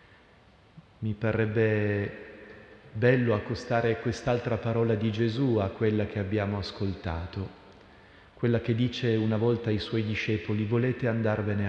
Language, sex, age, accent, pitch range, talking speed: Italian, male, 40-59, native, 105-130 Hz, 120 wpm